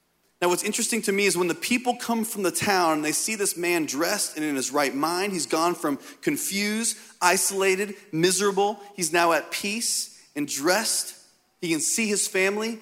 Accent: American